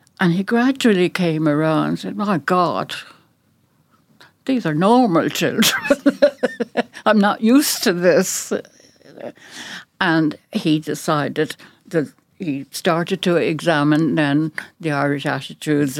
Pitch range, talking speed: 145-195 Hz, 115 wpm